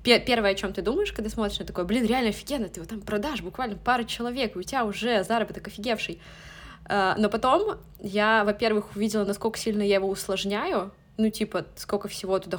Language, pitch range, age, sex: Russian, 175-210 Hz, 20-39, female